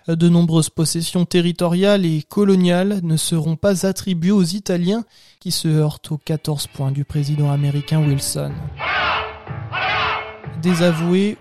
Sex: male